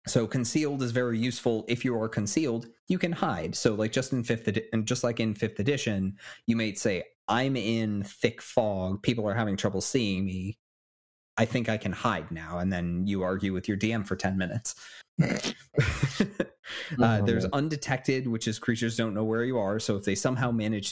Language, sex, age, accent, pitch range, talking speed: English, male, 30-49, American, 100-120 Hz, 200 wpm